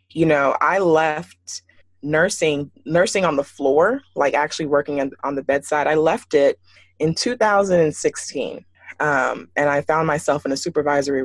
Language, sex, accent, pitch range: English, female, American, 135-165 Hz